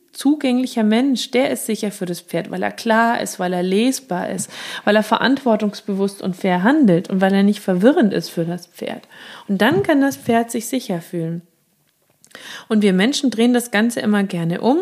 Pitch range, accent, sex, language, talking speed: 180-245 Hz, German, female, German, 195 wpm